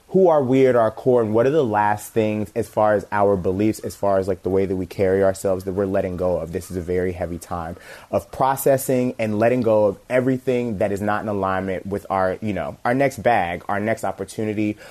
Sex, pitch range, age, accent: male, 100-125 Hz, 30-49, American